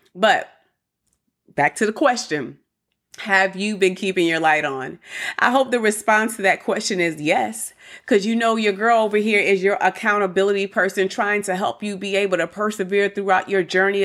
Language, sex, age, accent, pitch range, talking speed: English, female, 30-49, American, 185-225 Hz, 185 wpm